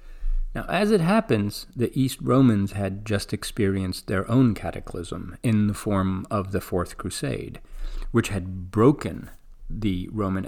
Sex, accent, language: male, American, English